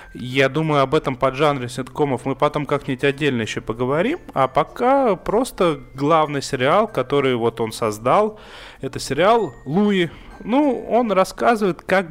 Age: 30-49